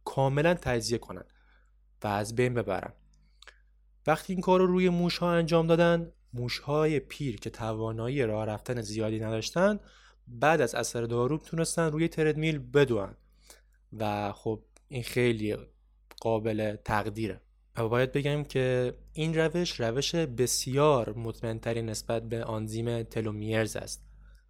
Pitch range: 110-145 Hz